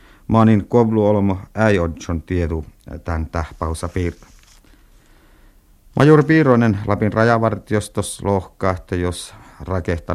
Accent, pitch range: native, 85-105 Hz